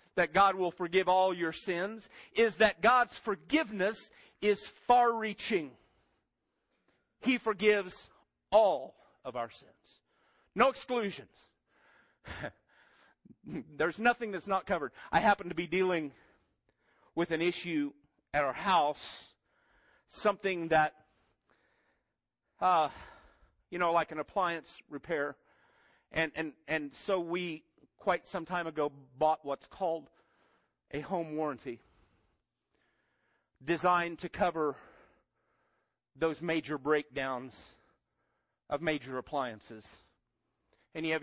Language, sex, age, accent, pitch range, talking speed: English, male, 40-59, American, 145-200 Hz, 105 wpm